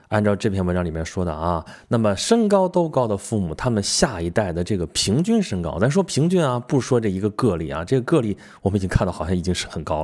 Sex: male